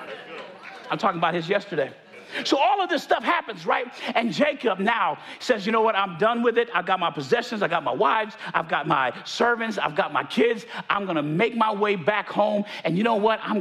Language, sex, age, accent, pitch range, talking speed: English, male, 40-59, American, 200-240 Hz, 225 wpm